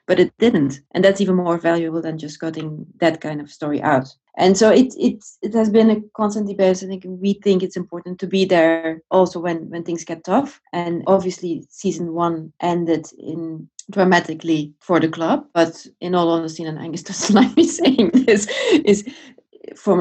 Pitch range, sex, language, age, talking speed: 160-195 Hz, female, English, 30-49, 190 wpm